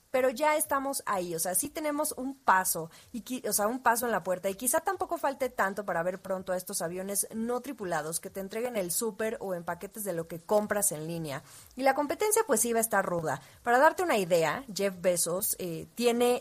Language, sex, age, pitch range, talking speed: Spanish, female, 20-39, 180-240 Hz, 225 wpm